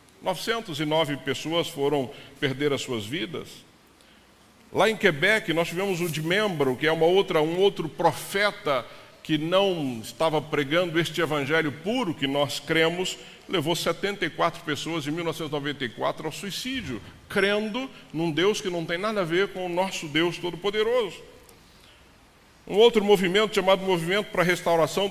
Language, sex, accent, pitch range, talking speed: Portuguese, male, Brazilian, 150-190 Hz, 140 wpm